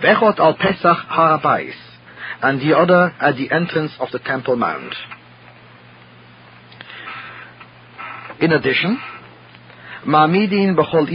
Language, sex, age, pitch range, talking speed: English, male, 50-69, 125-170 Hz, 90 wpm